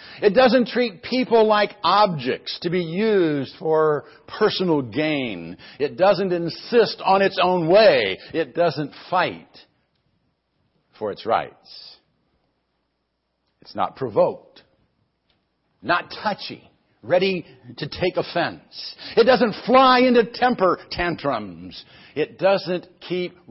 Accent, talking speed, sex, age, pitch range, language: American, 110 wpm, male, 60-79, 155-230 Hz, English